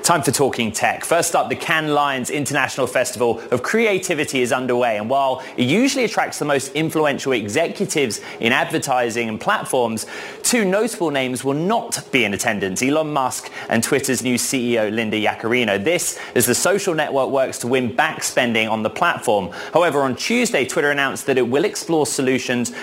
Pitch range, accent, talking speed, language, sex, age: 120-160 Hz, British, 175 wpm, English, male, 30-49